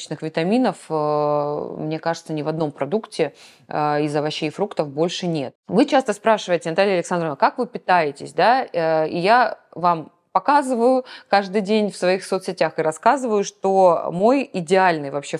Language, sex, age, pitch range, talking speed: Russian, female, 20-39, 150-190 Hz, 145 wpm